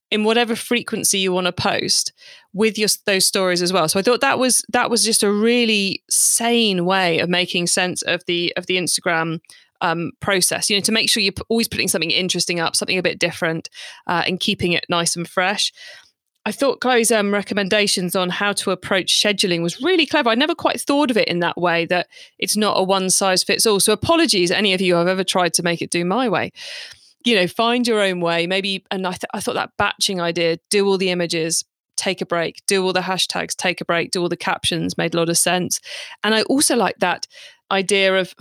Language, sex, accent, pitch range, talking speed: English, female, British, 180-225 Hz, 230 wpm